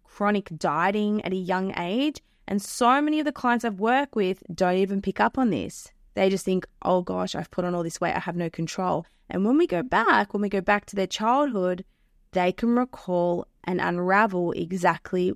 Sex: female